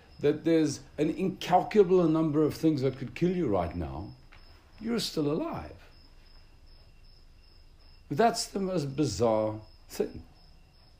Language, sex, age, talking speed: English, male, 60-79, 115 wpm